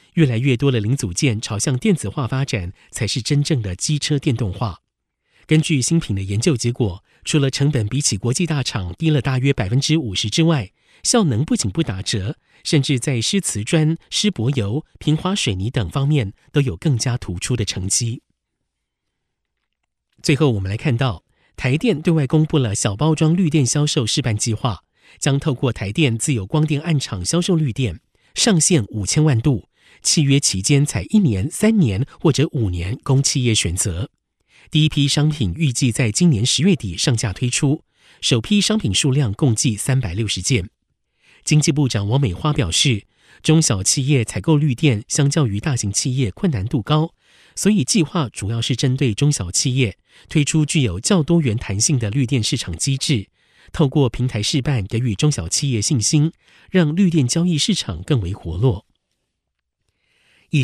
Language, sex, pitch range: Chinese, male, 115-155 Hz